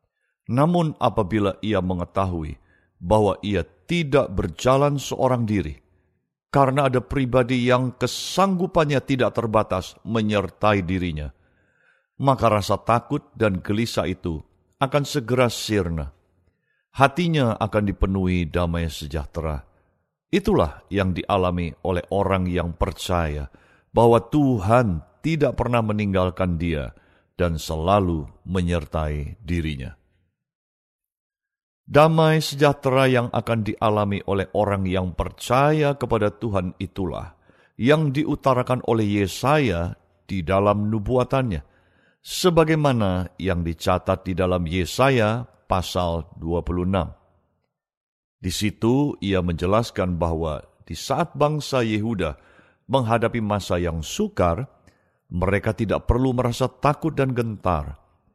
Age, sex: 50-69, male